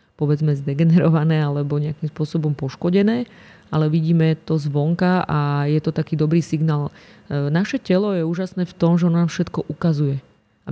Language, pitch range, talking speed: Slovak, 150-170 Hz, 150 wpm